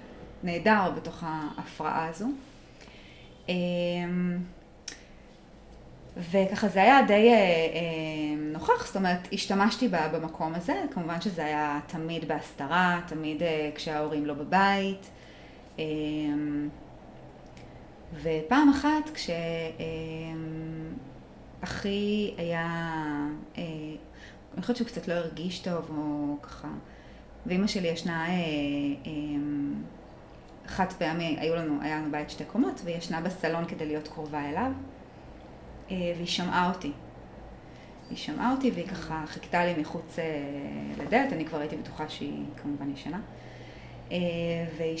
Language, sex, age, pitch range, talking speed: Hebrew, female, 20-39, 155-190 Hz, 100 wpm